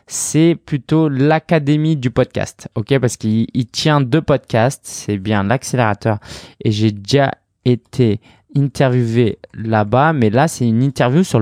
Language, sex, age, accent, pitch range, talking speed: French, male, 20-39, French, 110-140 Hz, 135 wpm